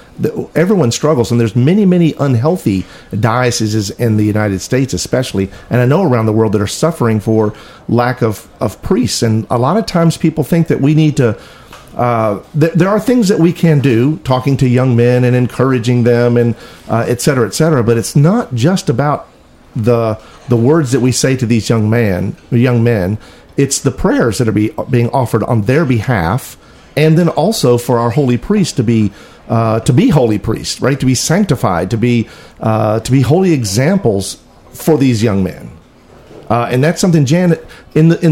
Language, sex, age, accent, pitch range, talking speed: English, male, 50-69, American, 115-155 Hz, 195 wpm